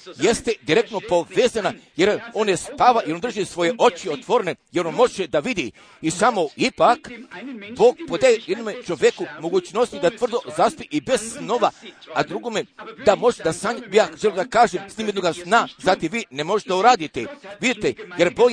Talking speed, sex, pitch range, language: 180 wpm, male, 195-265 Hz, Croatian